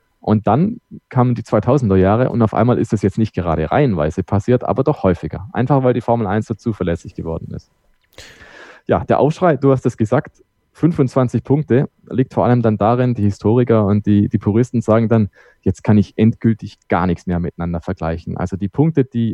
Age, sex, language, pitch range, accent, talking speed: 20-39, male, German, 100-120 Hz, German, 195 wpm